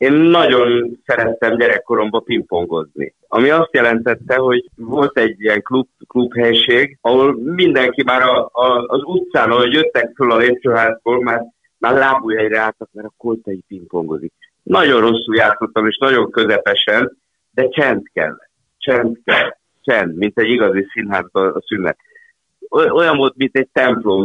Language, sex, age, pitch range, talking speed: Hungarian, male, 60-79, 110-160 Hz, 140 wpm